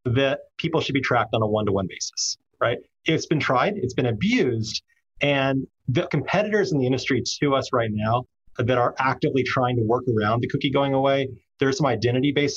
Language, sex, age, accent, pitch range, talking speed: English, male, 30-49, American, 120-145 Hz, 190 wpm